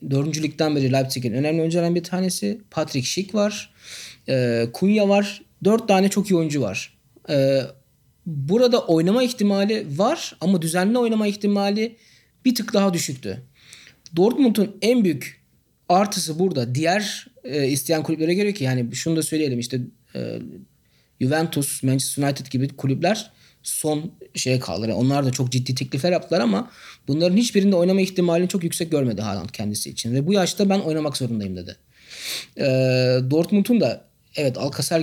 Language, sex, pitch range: Turkish, male, 130-190 Hz